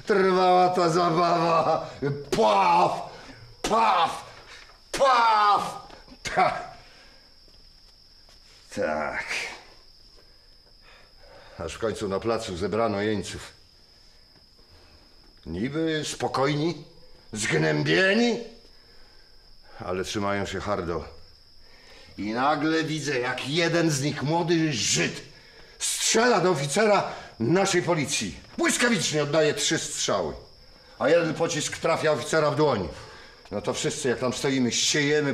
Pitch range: 115-165 Hz